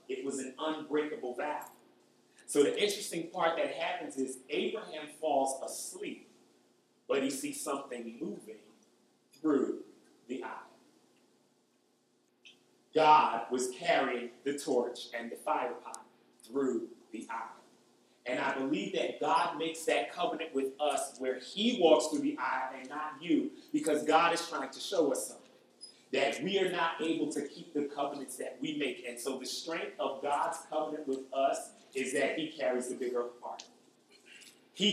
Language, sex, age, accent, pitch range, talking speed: English, male, 30-49, American, 135-175 Hz, 155 wpm